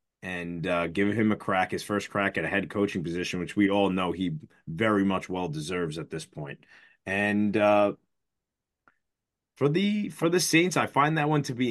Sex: male